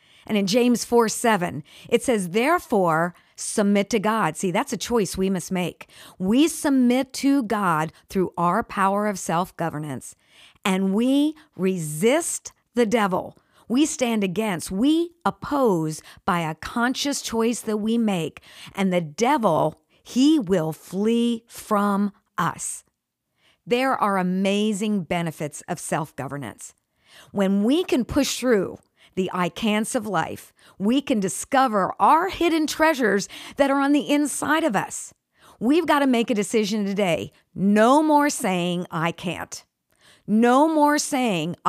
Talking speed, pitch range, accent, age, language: 140 wpm, 190-275 Hz, American, 50-69, English